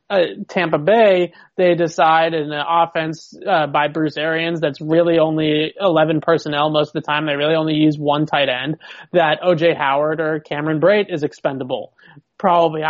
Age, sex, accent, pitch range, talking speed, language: 20-39, male, American, 150-175 Hz, 170 wpm, English